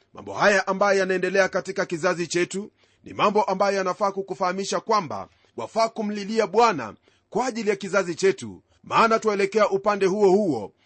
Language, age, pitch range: Swahili, 40-59, 180-210 Hz